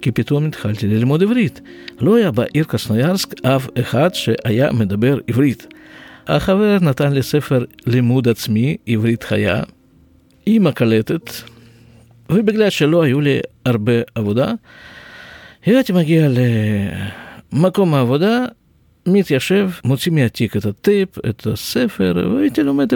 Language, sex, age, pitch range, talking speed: Hebrew, male, 50-69, 115-185 Hz, 110 wpm